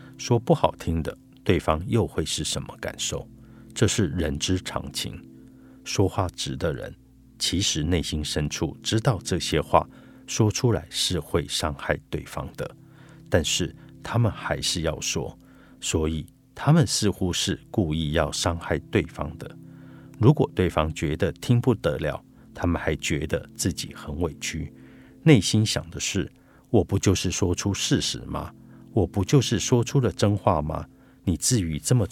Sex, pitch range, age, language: male, 80-115 Hz, 50-69, Chinese